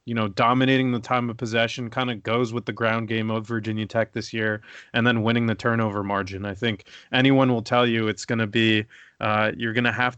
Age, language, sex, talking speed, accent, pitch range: 30-49, English, male, 230 wpm, American, 110-125 Hz